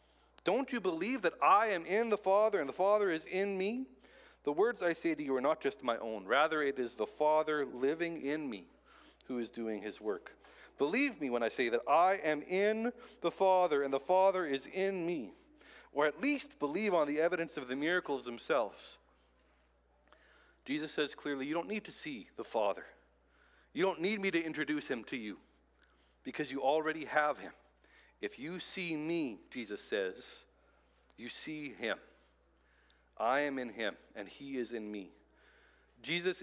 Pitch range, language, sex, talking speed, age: 120-190 Hz, English, male, 180 wpm, 40-59